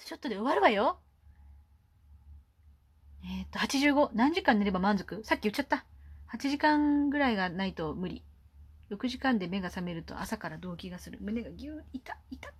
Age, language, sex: 20-39, Japanese, female